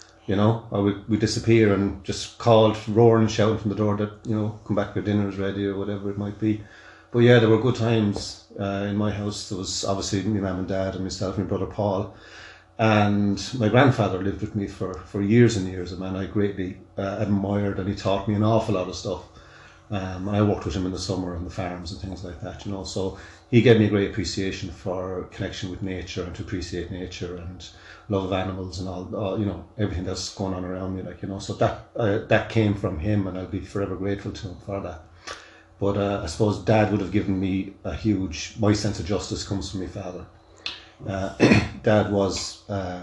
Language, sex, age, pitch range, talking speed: English, male, 30-49, 95-105 Hz, 235 wpm